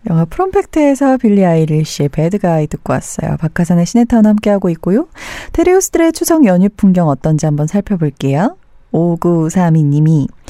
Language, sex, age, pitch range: Korean, female, 40-59, 165-250 Hz